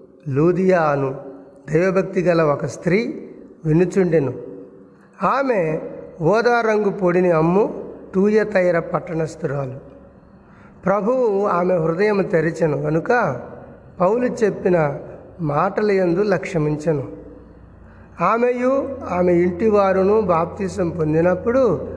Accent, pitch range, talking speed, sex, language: native, 155-205 Hz, 70 wpm, male, Telugu